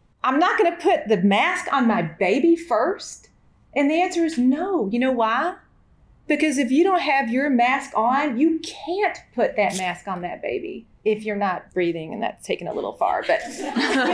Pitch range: 215-300 Hz